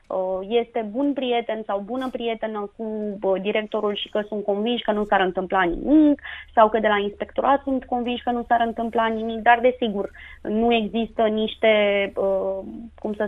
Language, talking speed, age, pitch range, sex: Romanian, 165 wpm, 20-39, 210-235 Hz, female